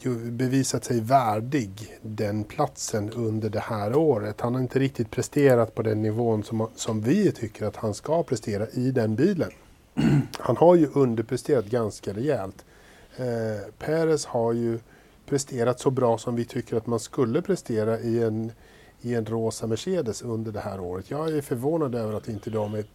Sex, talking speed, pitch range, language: male, 175 wpm, 110-135 Hz, Swedish